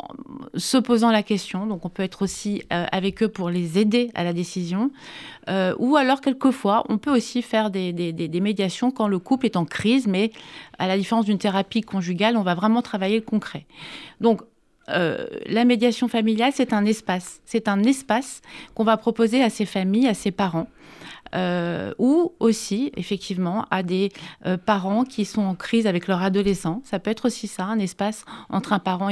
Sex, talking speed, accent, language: female, 200 wpm, French, French